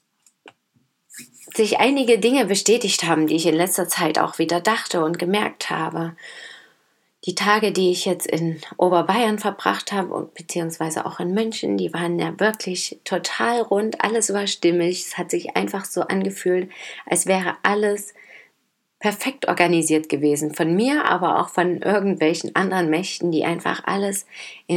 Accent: German